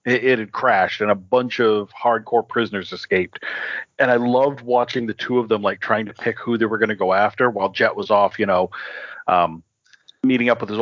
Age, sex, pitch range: 40-59, male, 115-150 Hz